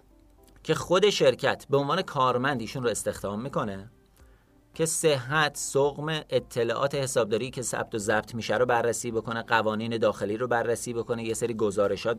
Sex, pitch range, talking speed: male, 115-155 Hz, 150 wpm